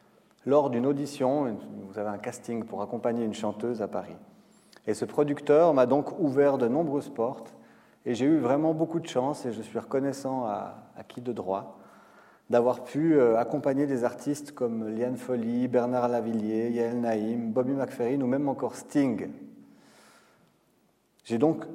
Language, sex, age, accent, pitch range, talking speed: French, male, 30-49, French, 115-145 Hz, 160 wpm